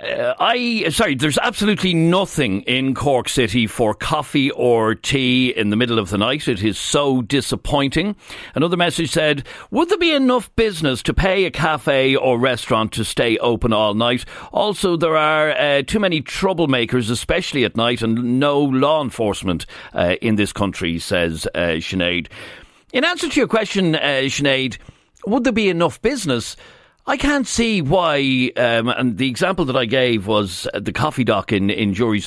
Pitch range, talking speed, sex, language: 115-185 Hz, 175 wpm, male, English